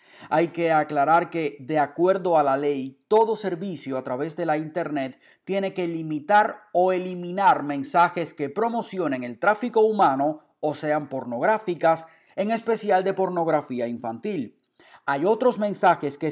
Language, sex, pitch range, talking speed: Spanish, male, 150-200 Hz, 145 wpm